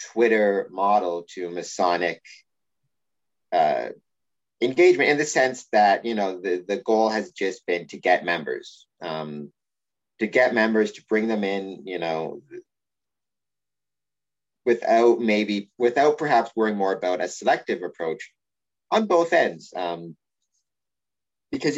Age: 30-49